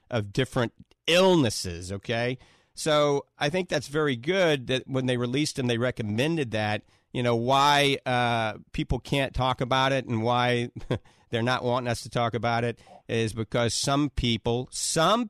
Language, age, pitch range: English, 40-59, 115-150 Hz